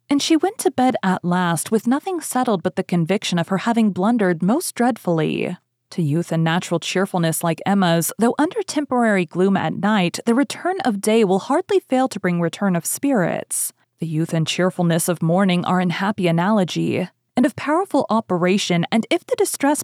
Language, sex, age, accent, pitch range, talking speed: English, female, 30-49, American, 175-245 Hz, 190 wpm